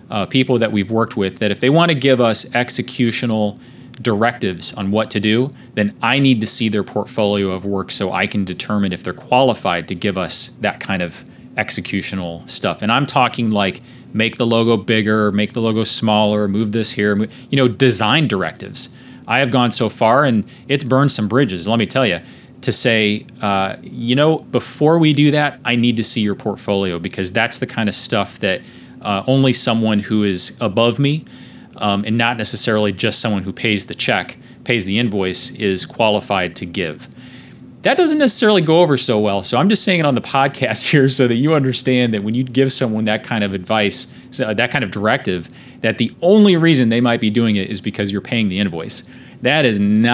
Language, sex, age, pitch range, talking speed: English, male, 30-49, 105-130 Hz, 205 wpm